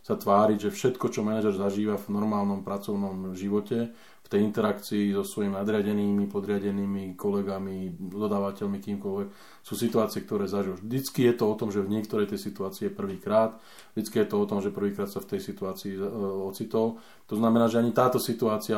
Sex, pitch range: male, 100-115 Hz